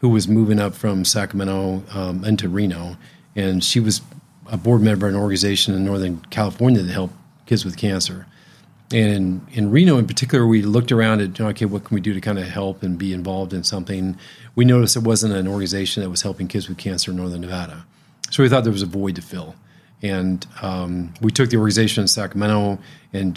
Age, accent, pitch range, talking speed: 40-59, American, 95-115 Hz, 215 wpm